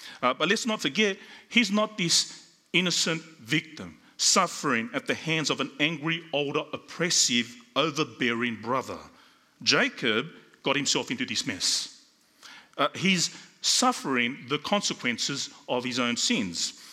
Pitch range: 140-215 Hz